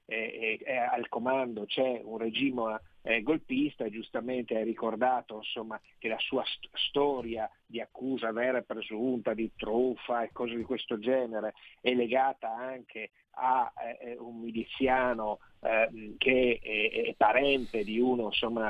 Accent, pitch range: native, 115-140 Hz